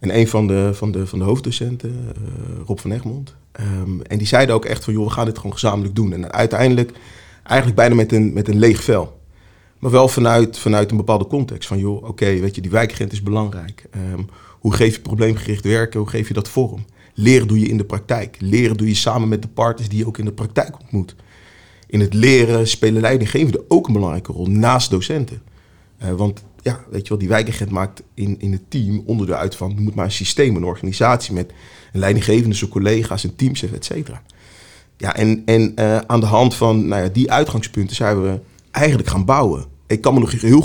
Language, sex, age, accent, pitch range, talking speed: Dutch, male, 30-49, Dutch, 100-120 Hz, 215 wpm